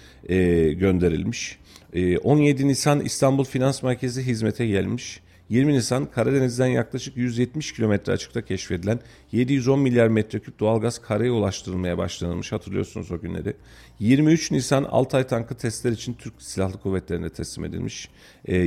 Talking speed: 130 wpm